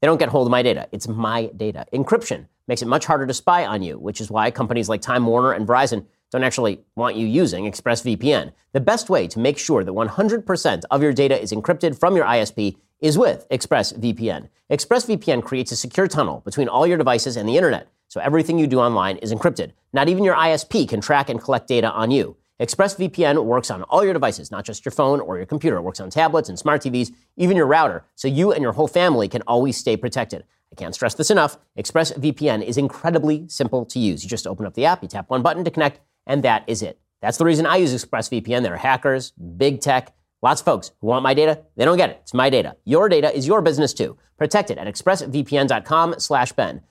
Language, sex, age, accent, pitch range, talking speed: English, male, 30-49, American, 110-155 Hz, 230 wpm